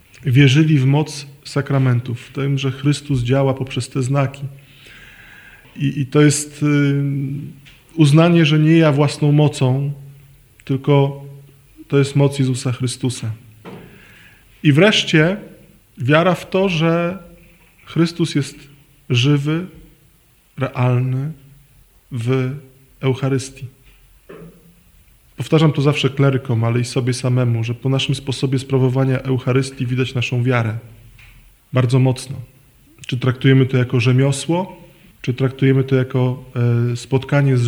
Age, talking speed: 20-39, 110 wpm